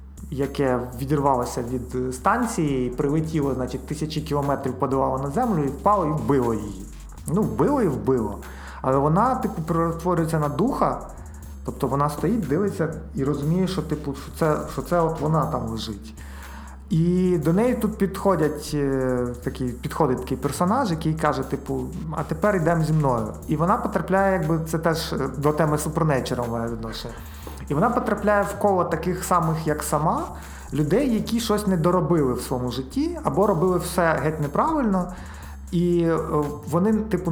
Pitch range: 130-175 Hz